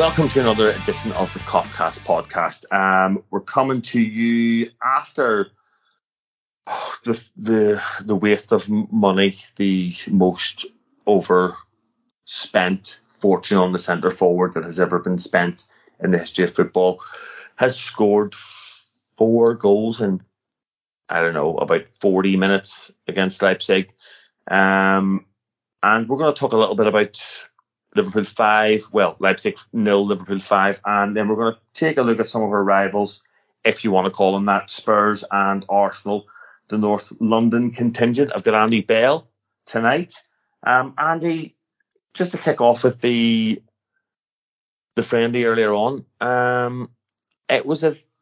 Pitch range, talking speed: 100-120 Hz, 145 wpm